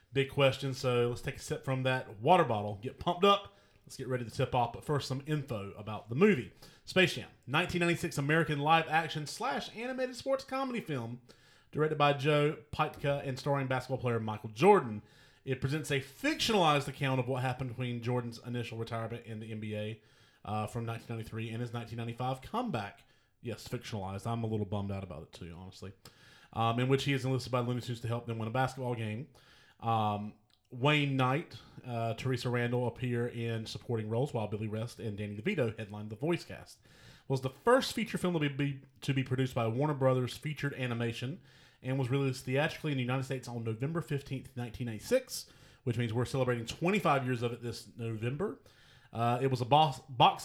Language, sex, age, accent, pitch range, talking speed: English, male, 30-49, American, 115-145 Hz, 195 wpm